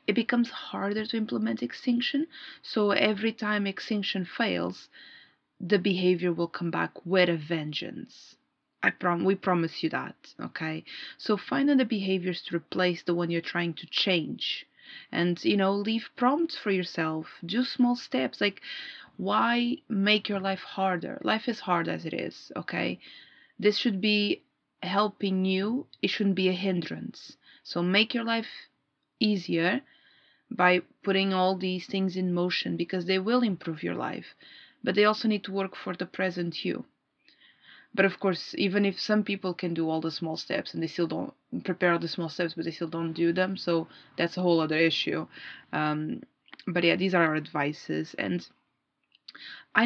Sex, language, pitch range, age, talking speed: female, English, 175-220 Hz, 30-49, 170 wpm